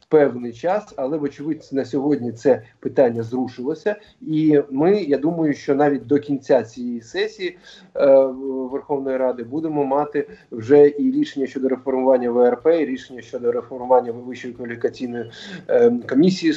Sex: male